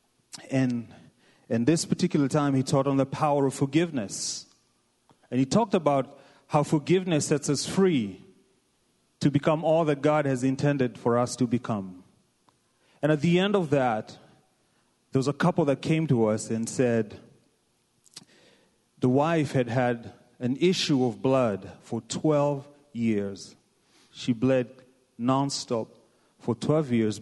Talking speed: 145 wpm